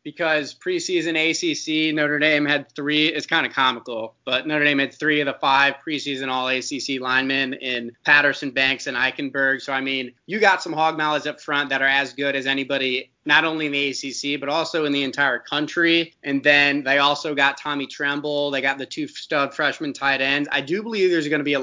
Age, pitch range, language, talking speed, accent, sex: 20-39, 135-155 Hz, English, 215 wpm, American, male